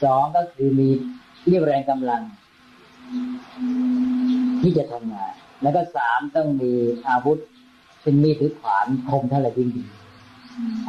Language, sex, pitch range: Thai, female, 135-175 Hz